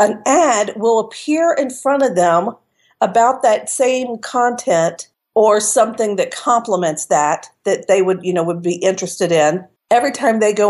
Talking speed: 170 wpm